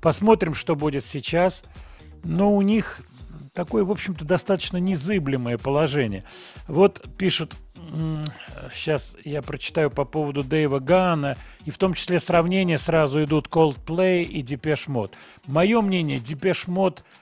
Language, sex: Russian, male